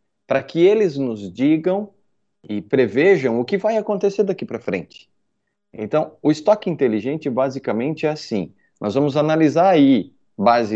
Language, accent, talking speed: Portuguese, Brazilian, 145 wpm